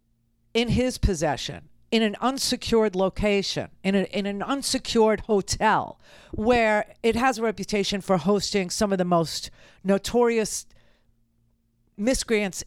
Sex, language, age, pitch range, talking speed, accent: female, English, 50-69, 165-220 Hz, 120 wpm, American